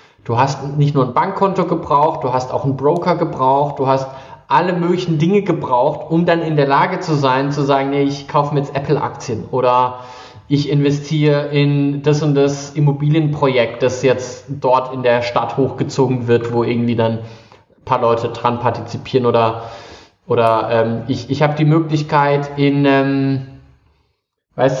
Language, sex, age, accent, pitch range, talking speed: German, male, 20-39, German, 125-155 Hz, 165 wpm